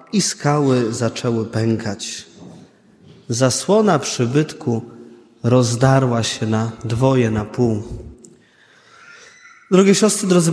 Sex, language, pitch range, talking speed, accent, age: male, Polish, 120-155 Hz, 85 wpm, native, 20-39